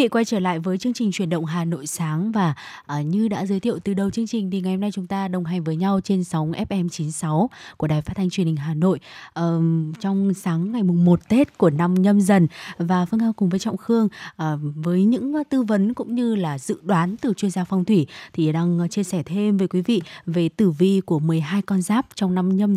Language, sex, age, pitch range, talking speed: Vietnamese, female, 20-39, 170-210 Hz, 245 wpm